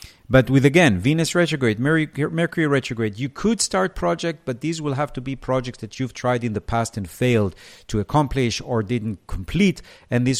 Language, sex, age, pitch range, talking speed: English, male, 50-69, 110-140 Hz, 190 wpm